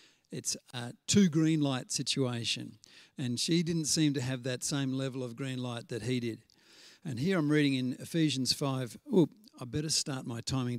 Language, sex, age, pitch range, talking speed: English, male, 50-69, 125-160 Hz, 185 wpm